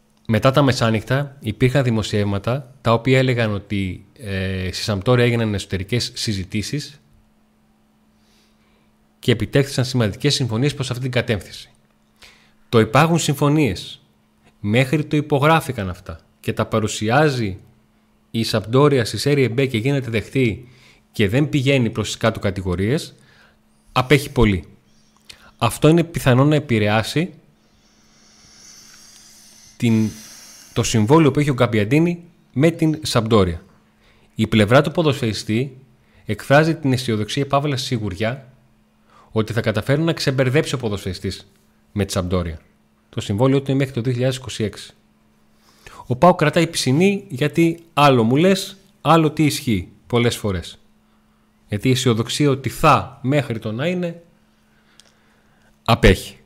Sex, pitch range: male, 100-140 Hz